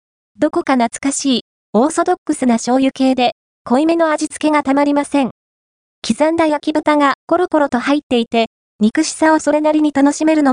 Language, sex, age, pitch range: Japanese, female, 20-39, 235-305 Hz